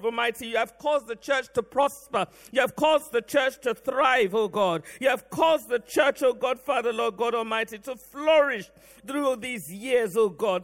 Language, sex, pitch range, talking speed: English, male, 220-280 Hz, 205 wpm